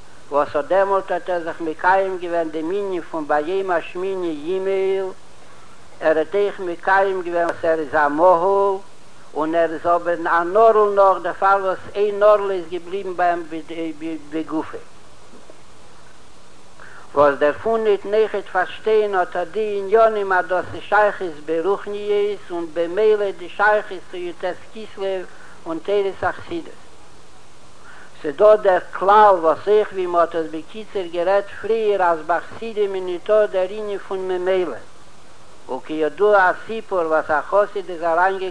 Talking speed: 85 wpm